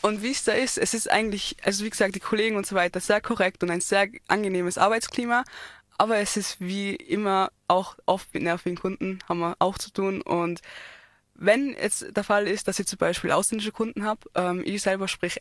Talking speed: 215 wpm